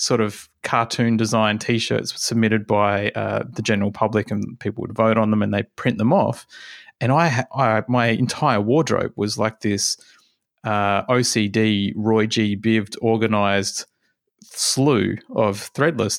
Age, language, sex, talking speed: 20-39, English, male, 150 wpm